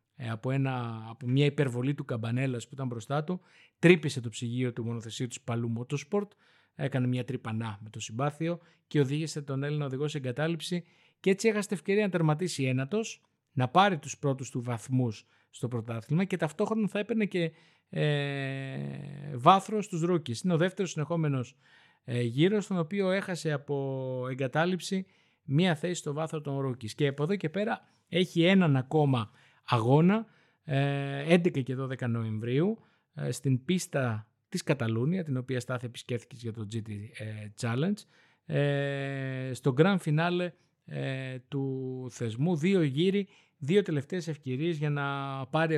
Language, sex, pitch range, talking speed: Greek, male, 130-165 Hz, 145 wpm